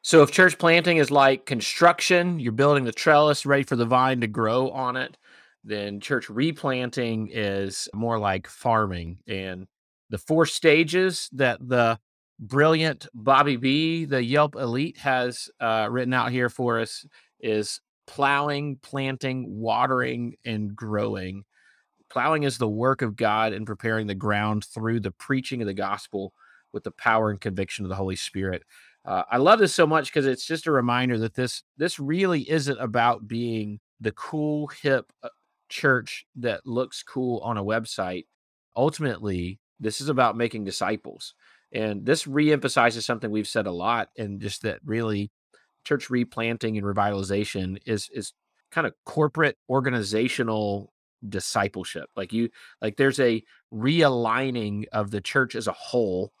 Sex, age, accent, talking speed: male, 30-49, American, 155 wpm